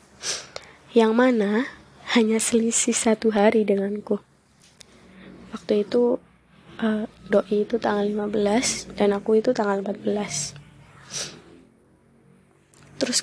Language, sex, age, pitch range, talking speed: Indonesian, female, 20-39, 205-225 Hz, 90 wpm